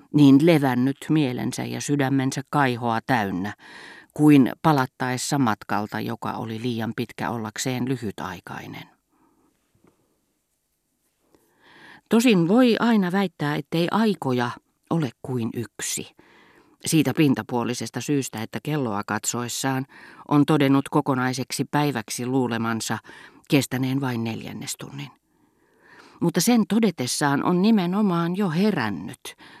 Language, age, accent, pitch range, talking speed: Finnish, 40-59, native, 120-150 Hz, 95 wpm